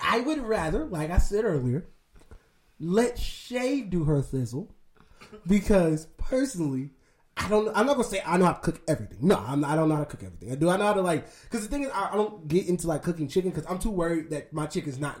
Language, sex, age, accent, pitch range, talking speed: English, male, 20-39, American, 155-200 Hz, 255 wpm